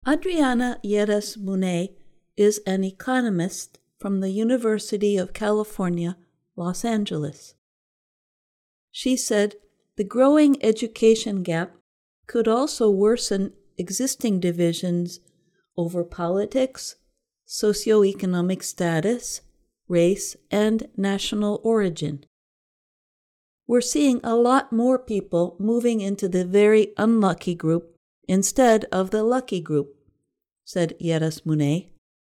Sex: female